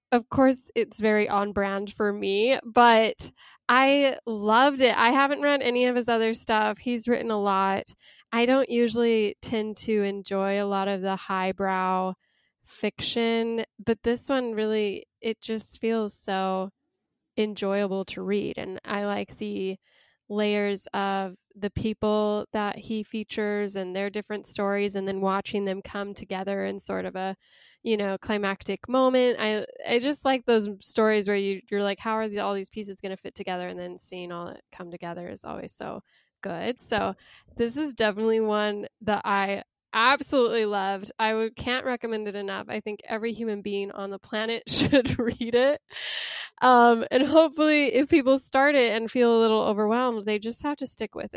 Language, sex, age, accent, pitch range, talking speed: English, female, 10-29, American, 200-235 Hz, 175 wpm